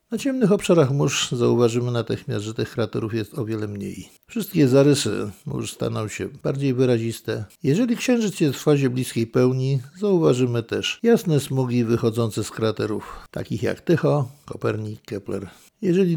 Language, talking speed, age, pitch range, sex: Polish, 150 wpm, 50-69, 115-165 Hz, male